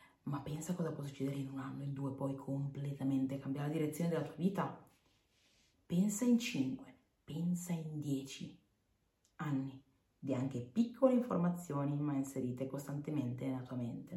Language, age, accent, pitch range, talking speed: Italian, 30-49, native, 140-180 Hz, 150 wpm